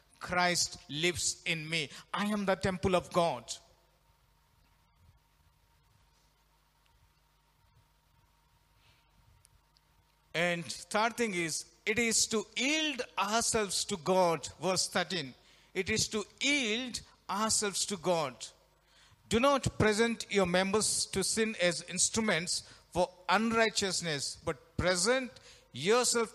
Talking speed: 100 wpm